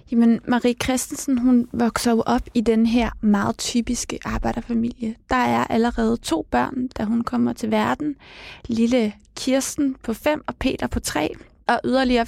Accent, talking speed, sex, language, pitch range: native, 155 wpm, female, Danish, 225-255 Hz